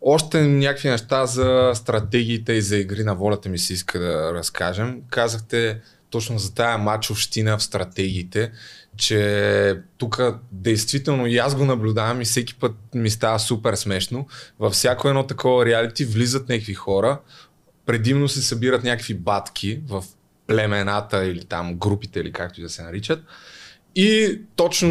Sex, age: male, 20-39